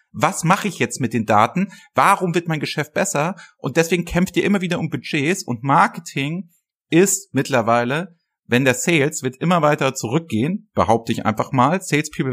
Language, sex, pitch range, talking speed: German, male, 115-155 Hz, 175 wpm